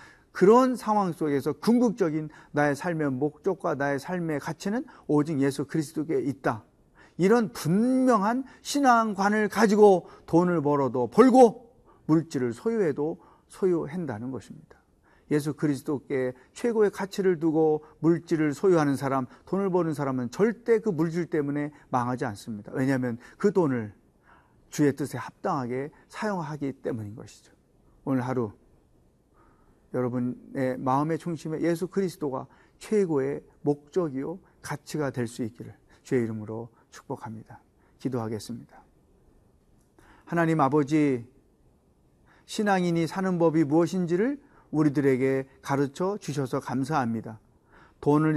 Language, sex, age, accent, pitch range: Korean, male, 40-59, native, 135-185 Hz